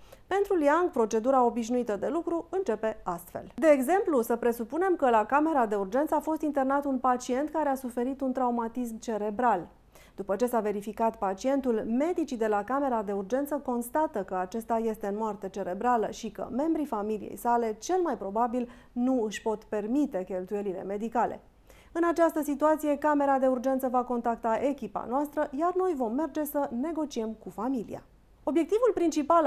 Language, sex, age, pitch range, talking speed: Romanian, female, 30-49, 220-290 Hz, 165 wpm